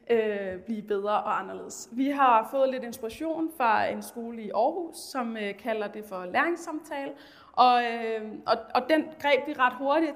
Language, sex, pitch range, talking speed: Danish, female, 220-275 Hz, 185 wpm